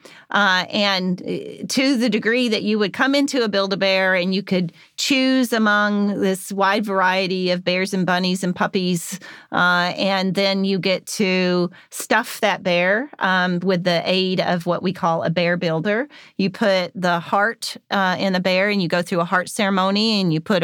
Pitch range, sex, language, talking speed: 180-210 Hz, female, English, 185 wpm